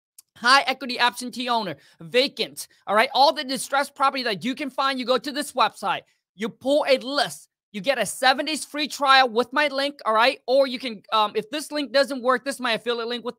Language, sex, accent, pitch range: English, male, American, 215-275 Hz